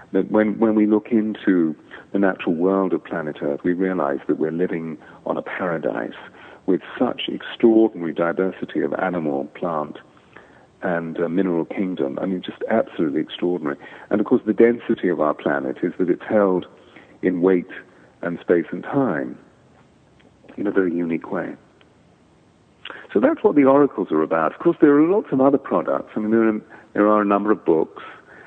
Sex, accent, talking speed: male, British, 170 wpm